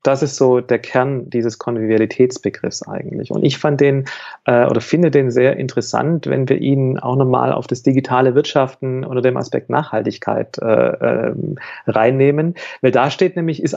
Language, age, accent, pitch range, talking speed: German, 40-59, German, 125-155 Hz, 170 wpm